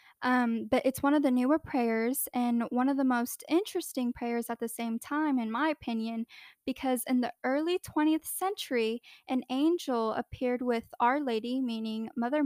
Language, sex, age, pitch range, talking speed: English, female, 10-29, 235-285 Hz, 175 wpm